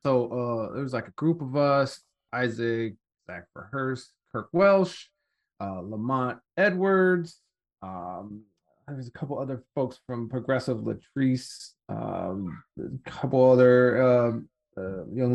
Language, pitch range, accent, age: English, 115-150 Hz, American, 30-49